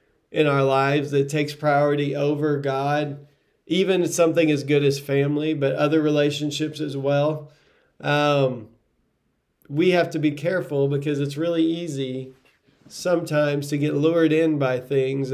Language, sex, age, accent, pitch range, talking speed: English, male, 40-59, American, 140-170 Hz, 140 wpm